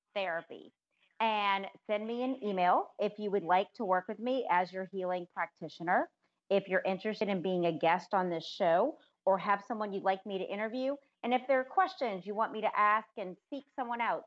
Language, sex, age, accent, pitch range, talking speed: English, female, 30-49, American, 170-210 Hz, 210 wpm